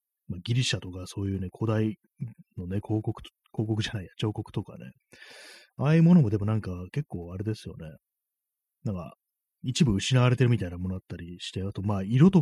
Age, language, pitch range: 30-49, Japanese, 95-125 Hz